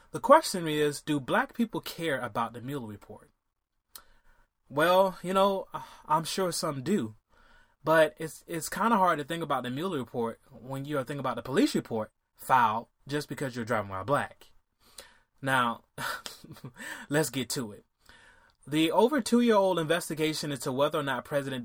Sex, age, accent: male, 20-39, American